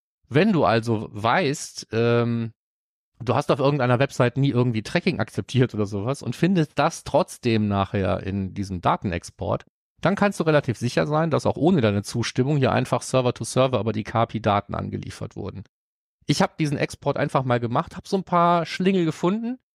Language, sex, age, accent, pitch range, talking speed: German, male, 30-49, German, 110-145 Hz, 175 wpm